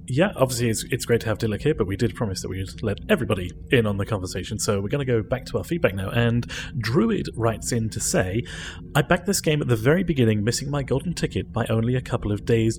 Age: 30-49